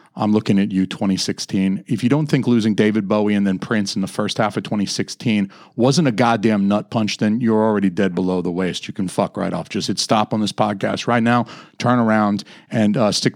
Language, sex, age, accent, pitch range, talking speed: English, male, 40-59, American, 105-135 Hz, 230 wpm